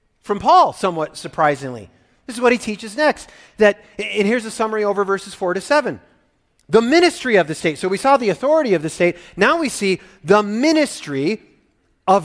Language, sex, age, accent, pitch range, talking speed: English, male, 40-59, American, 150-210 Hz, 190 wpm